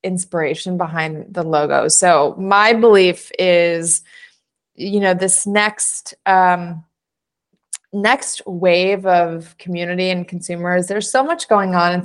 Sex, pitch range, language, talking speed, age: female, 175-215 Hz, English, 125 wpm, 20-39